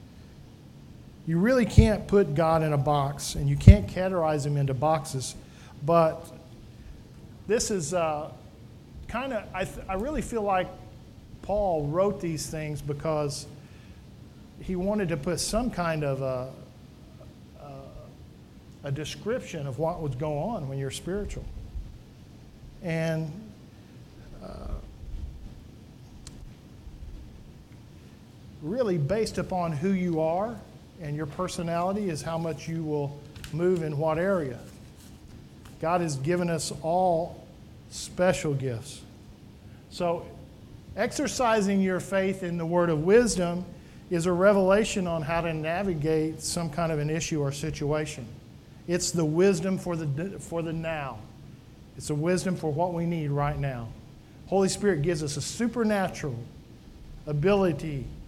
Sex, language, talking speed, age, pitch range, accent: male, English, 125 wpm, 50-69, 145-180 Hz, American